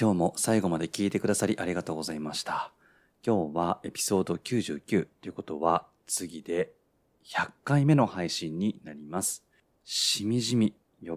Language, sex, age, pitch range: Japanese, male, 30-49, 90-130 Hz